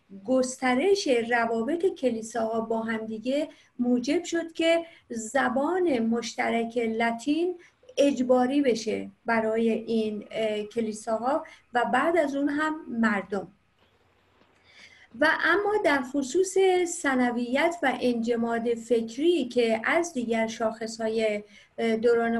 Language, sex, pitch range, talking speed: Persian, female, 230-290 Hz, 95 wpm